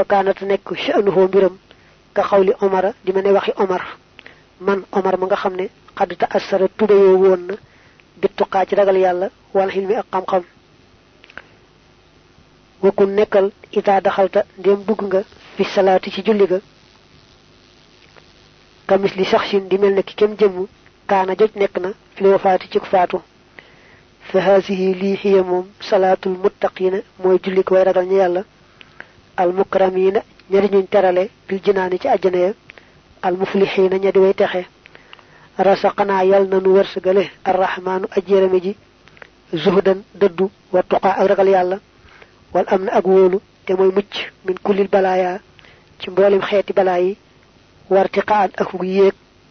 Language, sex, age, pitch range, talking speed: French, female, 30-49, 190-200 Hz, 100 wpm